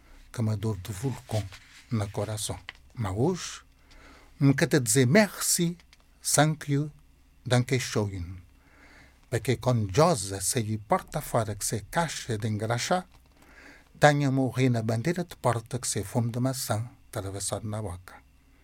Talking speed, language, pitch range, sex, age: 130 wpm, English, 100-130 Hz, male, 60-79